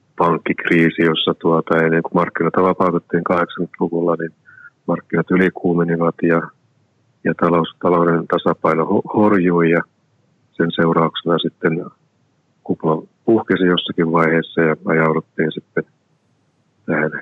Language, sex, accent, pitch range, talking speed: Finnish, male, native, 80-90 Hz, 100 wpm